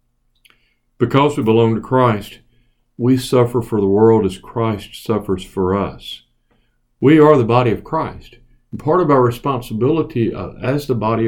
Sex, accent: male, American